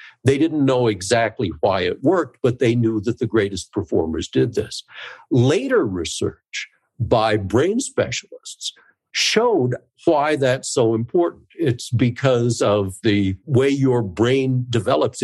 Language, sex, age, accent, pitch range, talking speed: English, male, 60-79, American, 110-140 Hz, 135 wpm